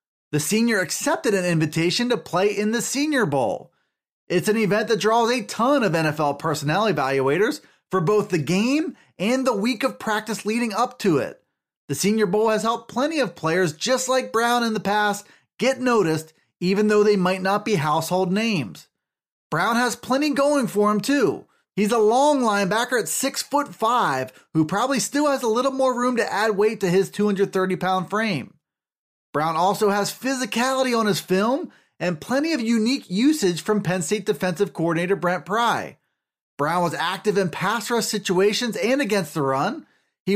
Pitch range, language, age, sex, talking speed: 185-235 Hz, English, 30-49, male, 175 wpm